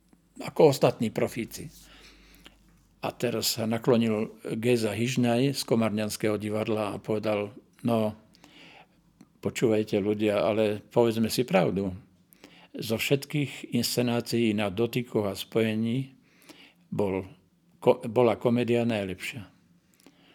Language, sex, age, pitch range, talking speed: Slovak, male, 50-69, 110-125 Hz, 95 wpm